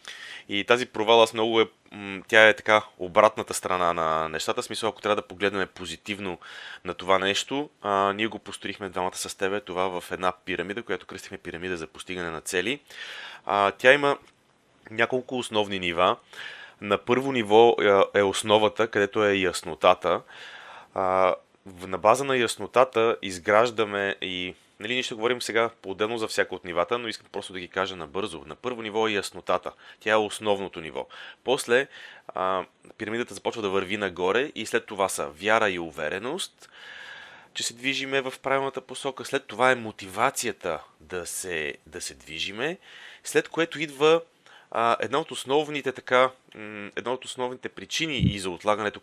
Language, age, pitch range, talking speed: Bulgarian, 30-49, 95-125 Hz, 155 wpm